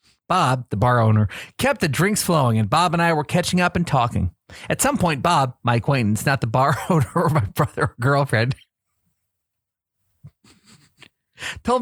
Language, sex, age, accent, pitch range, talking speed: English, male, 40-59, American, 120-175 Hz, 170 wpm